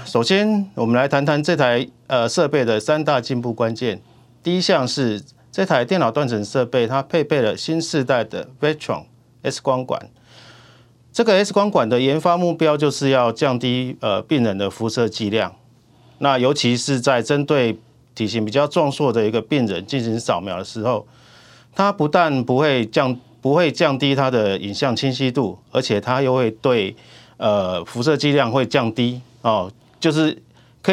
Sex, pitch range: male, 120-155 Hz